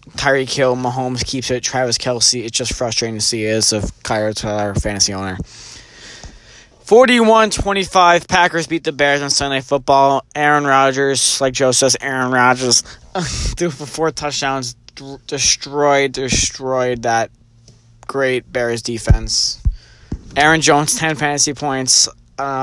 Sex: male